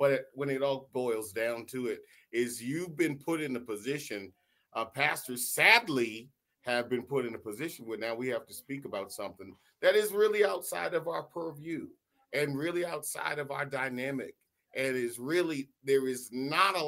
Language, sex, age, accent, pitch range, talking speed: English, male, 40-59, American, 125-165 Hz, 190 wpm